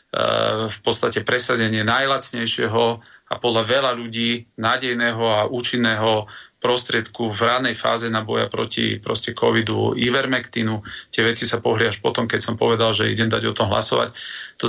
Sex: male